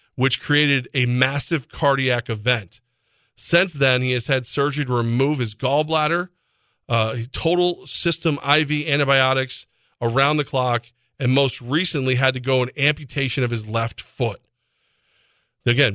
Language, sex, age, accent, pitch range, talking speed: English, male, 40-59, American, 115-140 Hz, 140 wpm